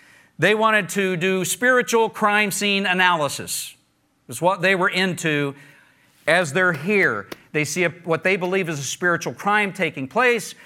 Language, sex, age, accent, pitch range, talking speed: English, male, 50-69, American, 135-180 Hz, 150 wpm